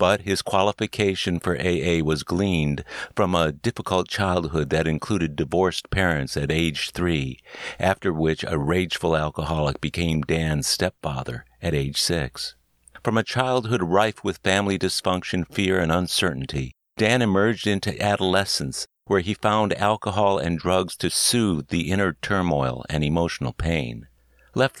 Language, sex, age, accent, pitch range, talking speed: English, male, 60-79, American, 80-100 Hz, 140 wpm